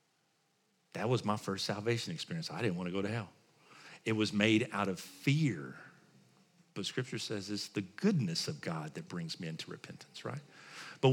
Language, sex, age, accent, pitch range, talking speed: English, male, 50-69, American, 115-155 Hz, 185 wpm